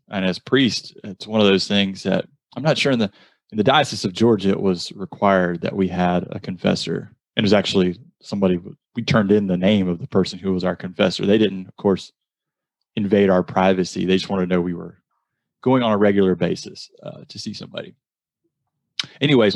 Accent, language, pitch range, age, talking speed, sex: American, English, 95-115 Hz, 30-49, 210 wpm, male